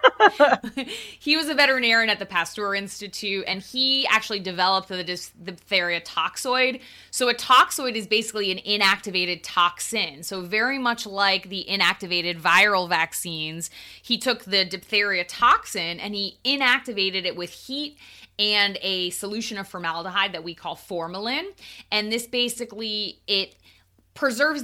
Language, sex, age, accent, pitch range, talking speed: English, female, 20-39, American, 180-225 Hz, 135 wpm